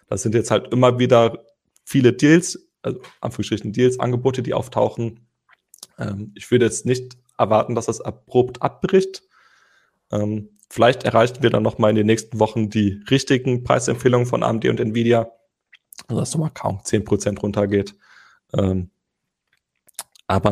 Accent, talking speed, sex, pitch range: German, 135 wpm, male, 110-125 Hz